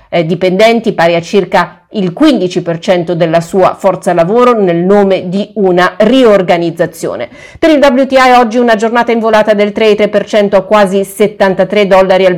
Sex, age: female, 40-59